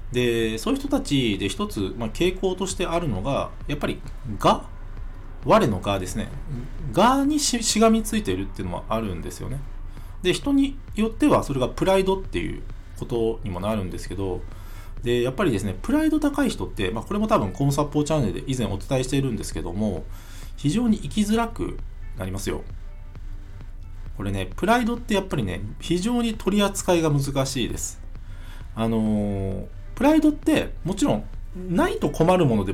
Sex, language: male, Japanese